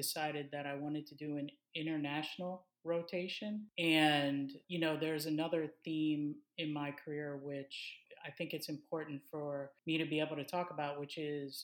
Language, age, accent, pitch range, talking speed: English, 30-49, American, 145-160 Hz, 170 wpm